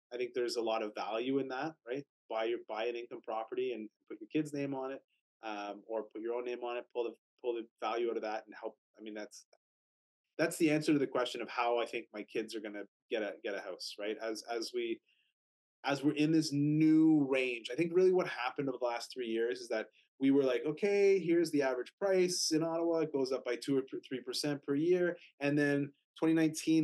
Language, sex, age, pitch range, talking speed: English, male, 30-49, 120-155 Hz, 245 wpm